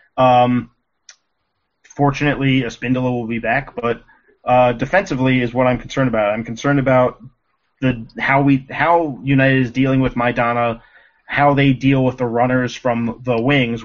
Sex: male